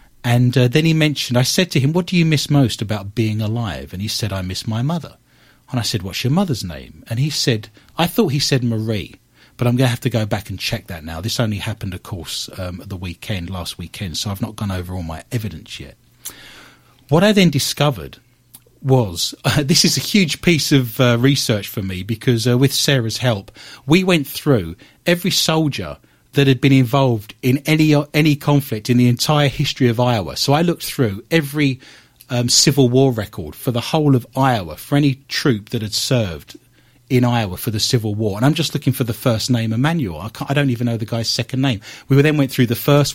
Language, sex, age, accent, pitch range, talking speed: English, male, 40-59, British, 110-145 Hz, 225 wpm